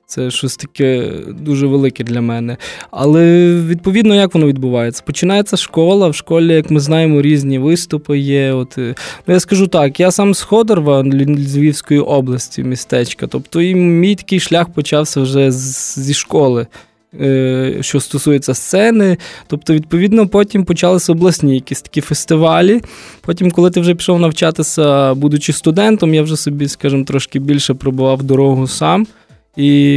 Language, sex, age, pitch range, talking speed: Ukrainian, male, 20-39, 140-170 Hz, 140 wpm